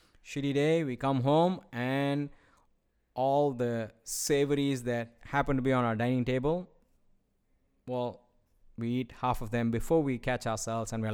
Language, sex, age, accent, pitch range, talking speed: English, male, 20-39, Indian, 115-135 Hz, 155 wpm